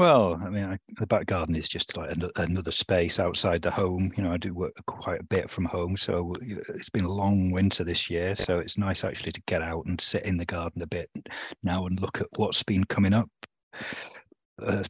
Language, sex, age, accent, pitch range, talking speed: English, male, 30-49, British, 90-105 Hz, 220 wpm